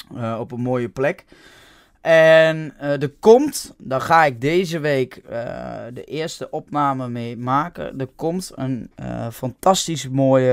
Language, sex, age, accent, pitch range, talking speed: Dutch, male, 20-39, Dutch, 120-150 Hz, 150 wpm